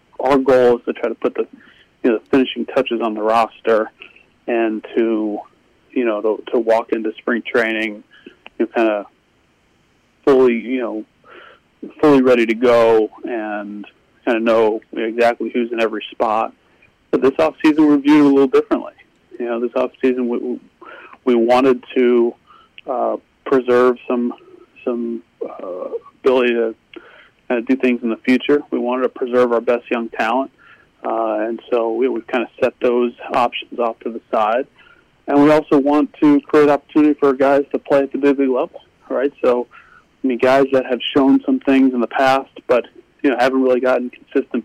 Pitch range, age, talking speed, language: 115-135 Hz, 40-59, 180 wpm, English